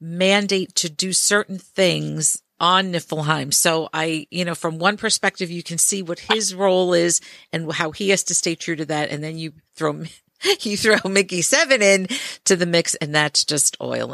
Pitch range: 165-205 Hz